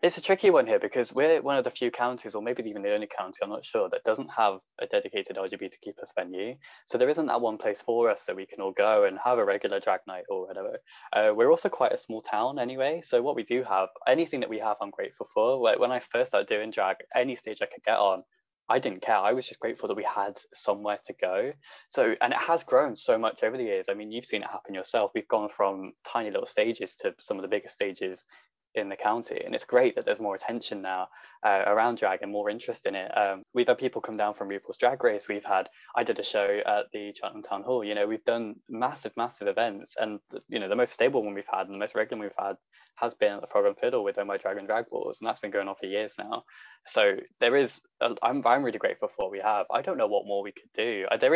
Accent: British